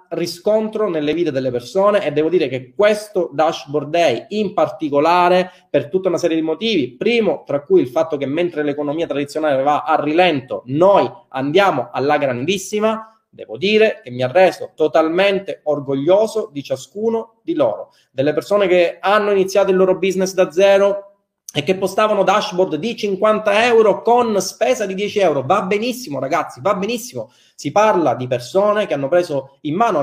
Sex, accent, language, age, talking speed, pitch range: male, native, Italian, 30-49, 165 wpm, 145-205 Hz